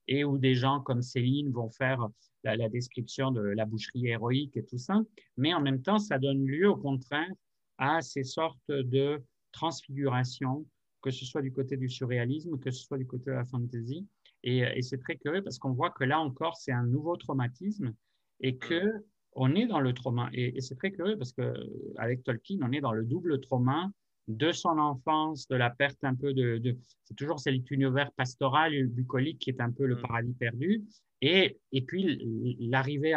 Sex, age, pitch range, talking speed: male, 50-69, 120-145 Hz, 195 wpm